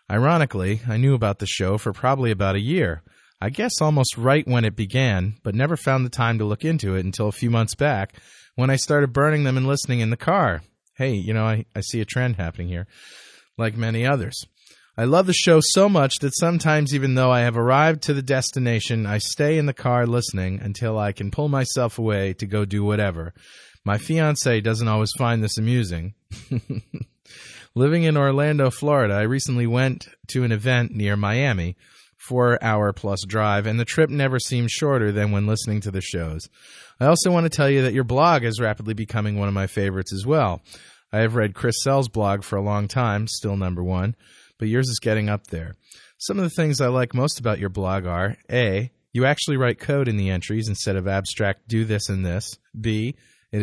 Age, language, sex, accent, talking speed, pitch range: 30-49, English, male, American, 205 wpm, 100-135 Hz